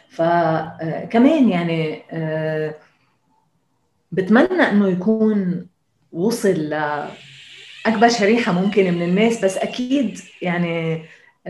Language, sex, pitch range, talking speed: Arabic, female, 165-215 Hz, 75 wpm